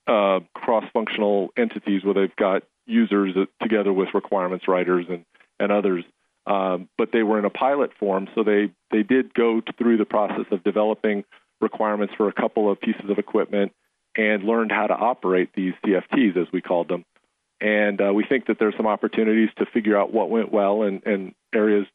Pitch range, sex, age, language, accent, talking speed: 95-110 Hz, male, 40-59, English, American, 185 wpm